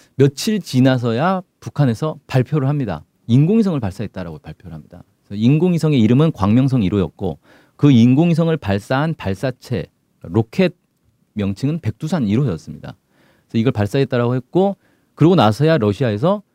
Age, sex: 40-59, male